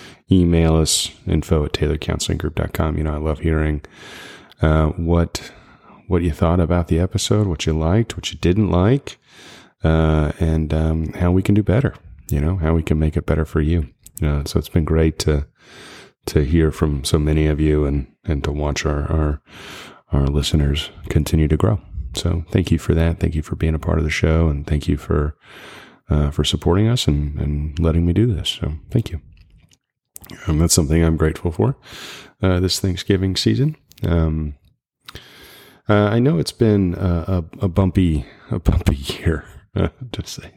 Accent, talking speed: American, 185 wpm